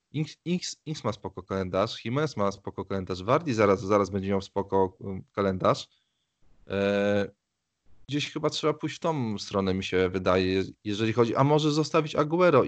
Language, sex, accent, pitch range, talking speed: Polish, male, native, 95-125 Hz, 145 wpm